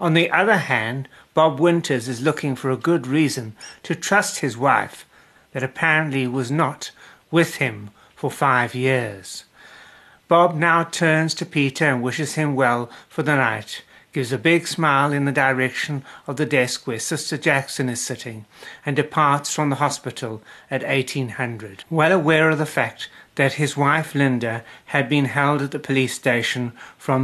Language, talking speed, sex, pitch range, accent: English, 165 wpm, male, 130-155 Hz, British